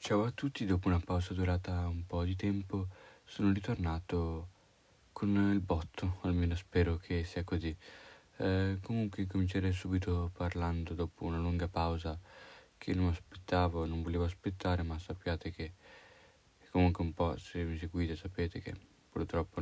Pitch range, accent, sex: 85-95 Hz, native, male